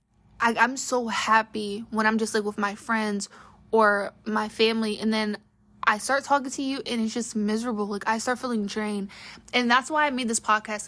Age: 20-39